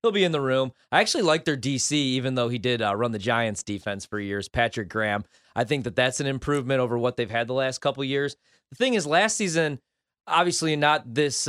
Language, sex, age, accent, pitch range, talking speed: English, male, 30-49, American, 110-145 Hz, 240 wpm